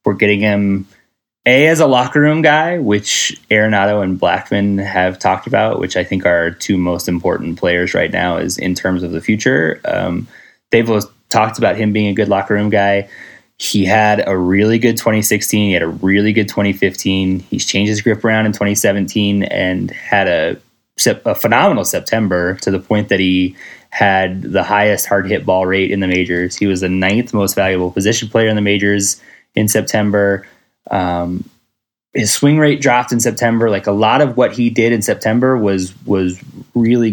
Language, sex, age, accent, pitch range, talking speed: English, male, 20-39, American, 95-115 Hz, 185 wpm